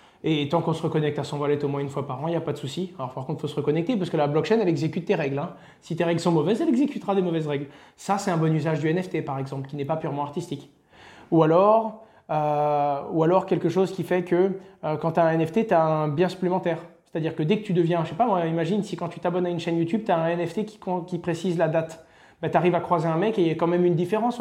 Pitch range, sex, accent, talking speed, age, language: 155-180 Hz, male, French, 300 wpm, 20-39, French